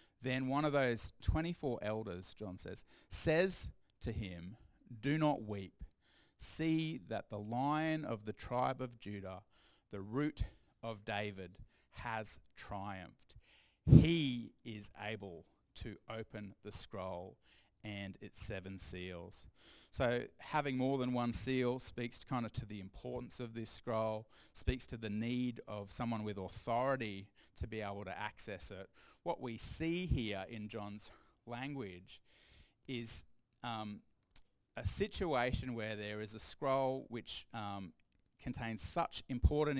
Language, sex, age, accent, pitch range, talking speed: English, male, 30-49, Australian, 100-125 Hz, 135 wpm